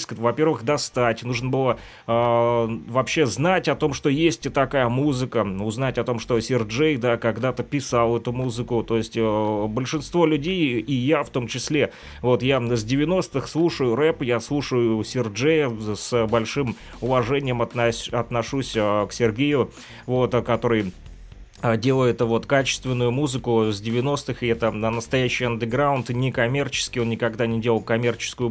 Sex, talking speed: male, 145 wpm